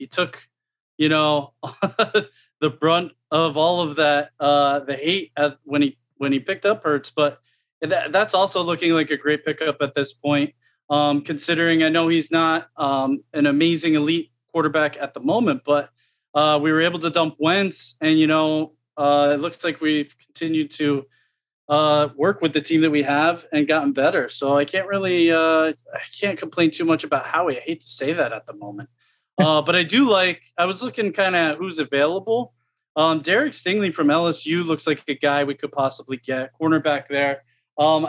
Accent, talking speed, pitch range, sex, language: American, 190 wpm, 145-175 Hz, male, English